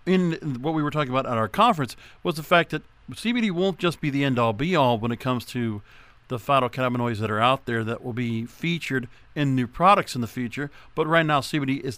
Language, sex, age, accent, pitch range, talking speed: English, male, 50-69, American, 120-160 Hz, 225 wpm